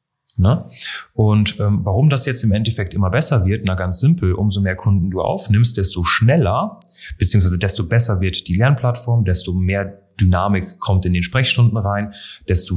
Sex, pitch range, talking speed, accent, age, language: male, 90-110 Hz, 170 wpm, German, 30-49, German